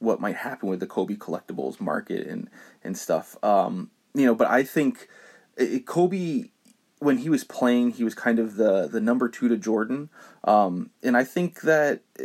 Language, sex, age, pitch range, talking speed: English, male, 20-39, 105-160 Hz, 180 wpm